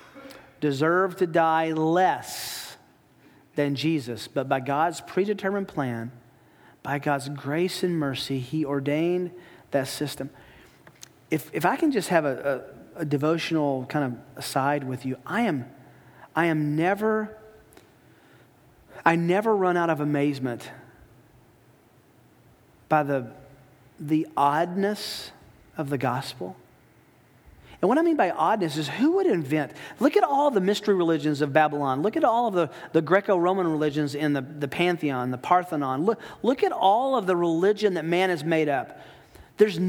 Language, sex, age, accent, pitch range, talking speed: English, male, 40-59, American, 140-185 Hz, 145 wpm